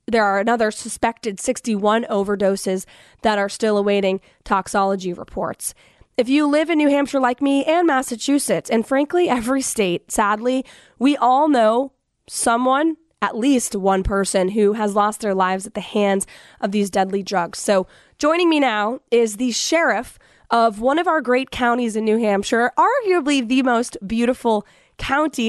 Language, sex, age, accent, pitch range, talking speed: English, female, 20-39, American, 210-260 Hz, 160 wpm